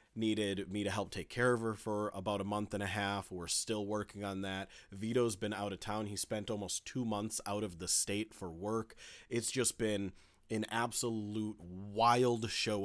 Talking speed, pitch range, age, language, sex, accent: 200 wpm, 100-130 Hz, 30-49, English, male, American